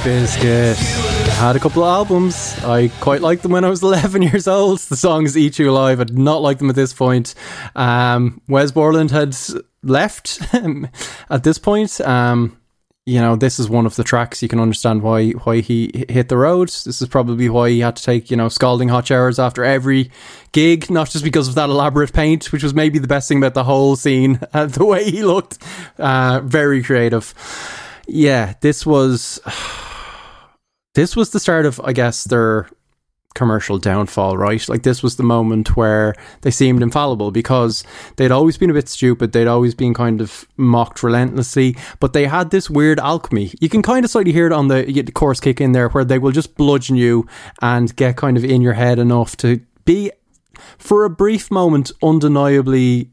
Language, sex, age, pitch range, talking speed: English, male, 20-39, 120-150 Hz, 200 wpm